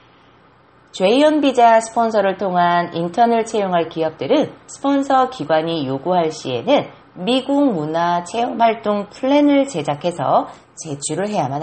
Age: 30-49